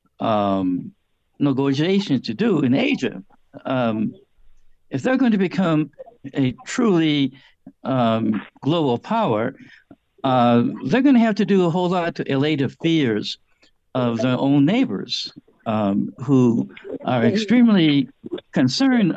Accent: American